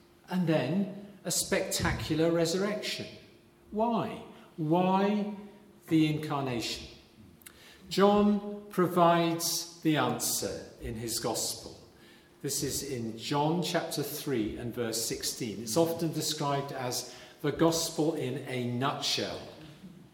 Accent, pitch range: British, 140-185 Hz